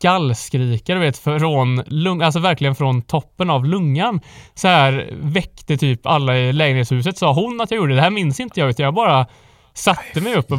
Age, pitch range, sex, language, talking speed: 20-39, 130-180 Hz, male, Swedish, 205 wpm